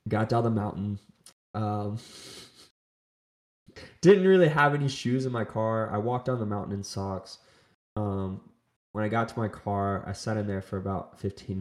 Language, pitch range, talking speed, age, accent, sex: English, 95-115 Hz, 175 wpm, 20-39, American, male